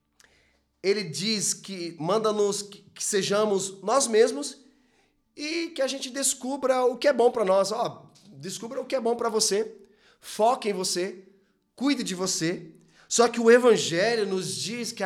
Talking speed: 155 wpm